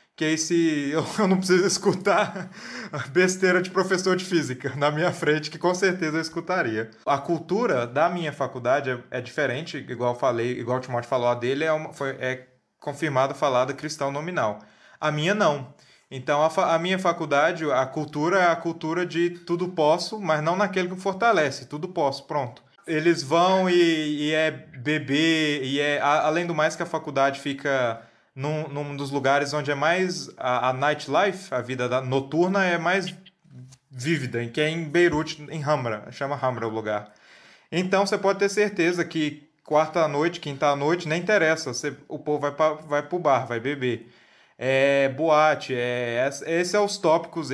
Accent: Brazilian